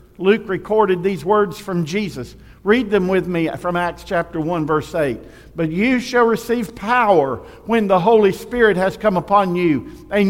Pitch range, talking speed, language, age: 175-225 Hz, 175 wpm, English, 50-69